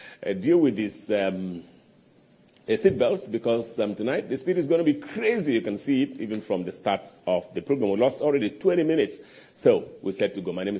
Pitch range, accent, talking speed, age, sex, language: 100-155 Hz, Nigerian, 220 wpm, 40-59, male, English